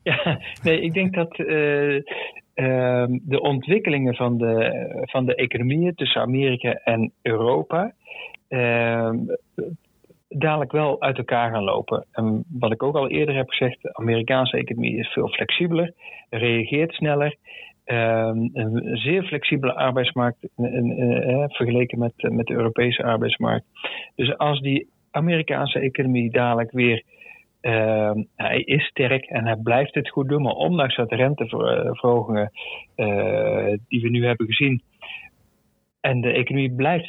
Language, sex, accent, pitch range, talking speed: Dutch, male, Dutch, 115-140 Hz, 140 wpm